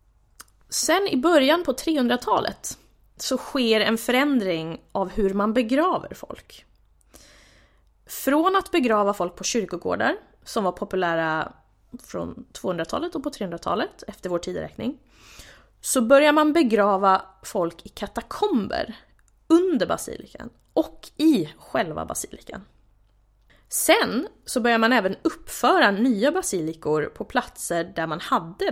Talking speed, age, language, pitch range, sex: 120 wpm, 20-39, Swedish, 195-290 Hz, female